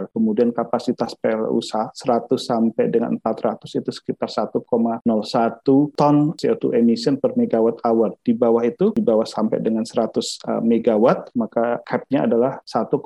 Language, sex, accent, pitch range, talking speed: Indonesian, male, native, 120-150 Hz, 130 wpm